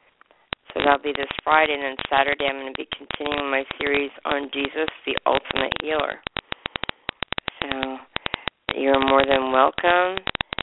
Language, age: English, 40-59